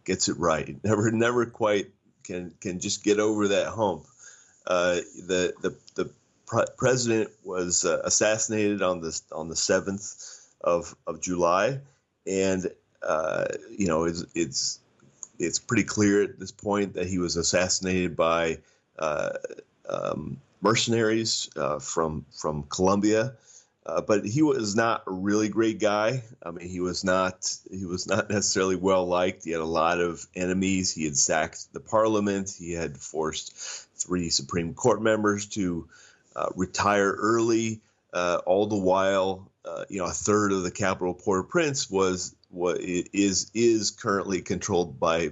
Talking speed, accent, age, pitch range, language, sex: 155 wpm, American, 30-49, 90-105 Hz, English, male